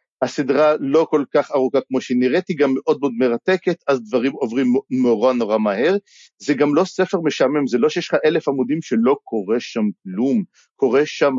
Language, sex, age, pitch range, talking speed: Hebrew, male, 50-69, 130-210 Hz, 190 wpm